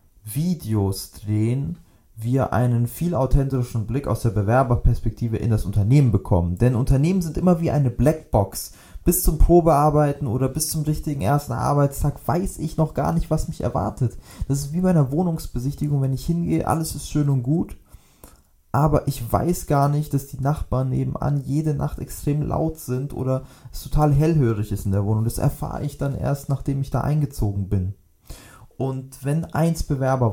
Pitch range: 110-145 Hz